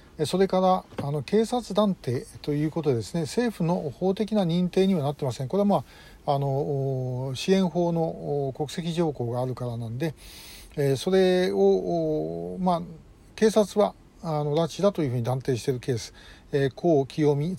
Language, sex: Japanese, male